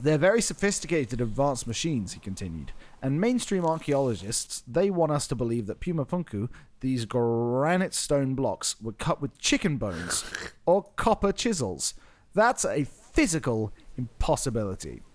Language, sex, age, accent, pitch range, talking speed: English, male, 30-49, British, 120-165 Hz, 135 wpm